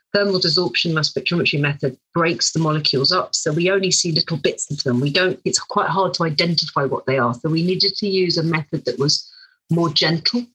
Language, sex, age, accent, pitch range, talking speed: English, female, 40-59, British, 145-180 Hz, 215 wpm